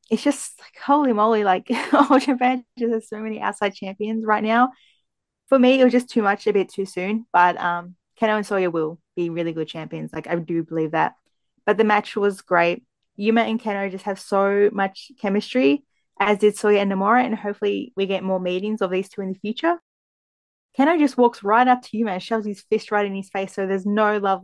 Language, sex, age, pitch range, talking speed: English, female, 20-39, 195-230 Hz, 225 wpm